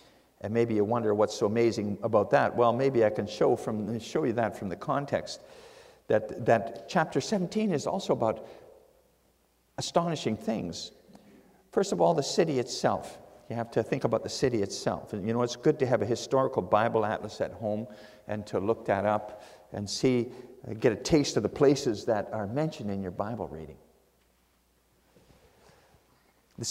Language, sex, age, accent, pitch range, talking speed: English, male, 50-69, American, 105-155 Hz, 175 wpm